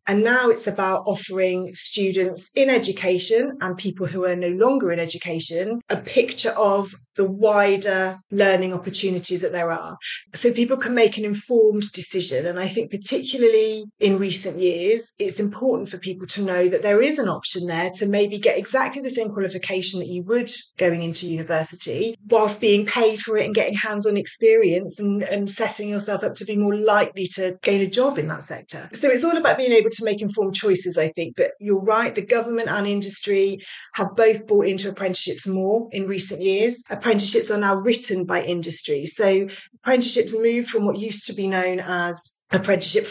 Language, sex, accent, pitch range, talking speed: English, female, British, 185-220 Hz, 190 wpm